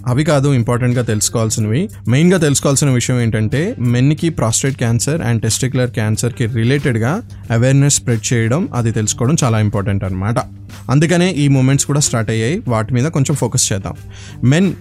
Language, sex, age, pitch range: Telugu, male, 20-39, 115-145 Hz